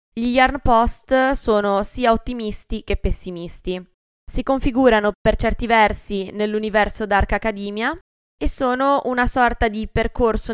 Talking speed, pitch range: 125 wpm, 190-235 Hz